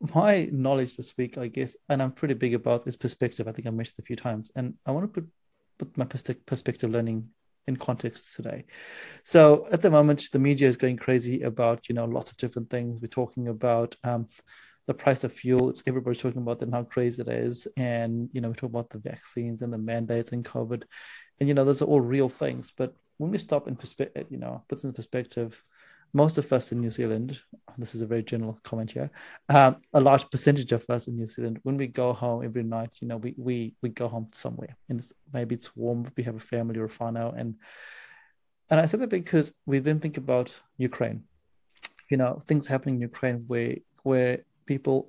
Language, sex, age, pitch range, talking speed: English, male, 30-49, 115-135 Hz, 220 wpm